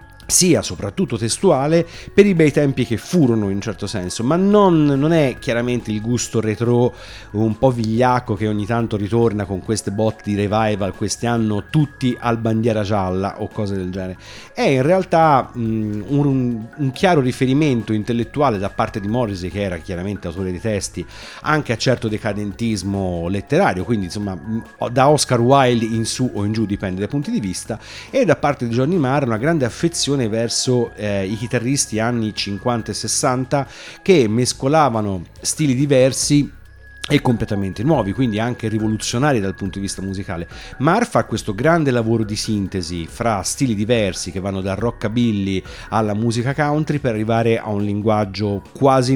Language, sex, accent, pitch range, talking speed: Italian, male, native, 100-130 Hz, 165 wpm